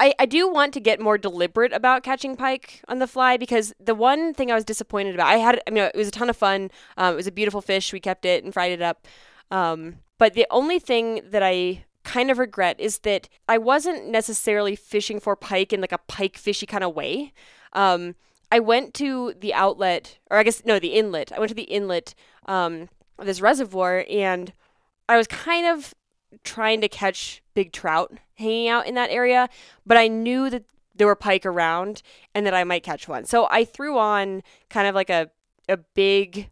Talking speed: 215 wpm